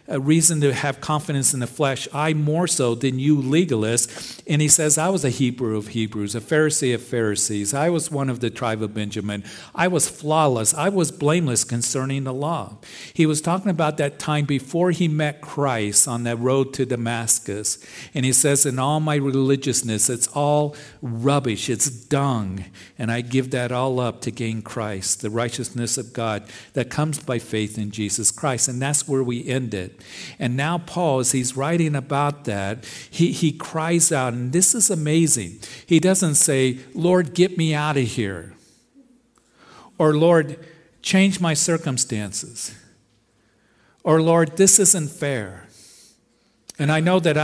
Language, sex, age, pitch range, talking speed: English, male, 50-69, 115-155 Hz, 170 wpm